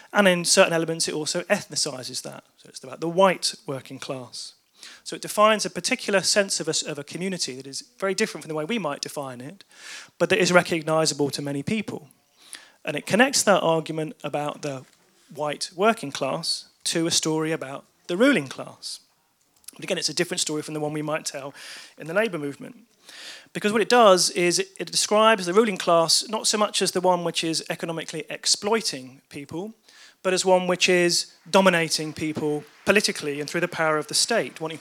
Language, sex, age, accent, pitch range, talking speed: English, male, 30-49, British, 155-195 Hz, 200 wpm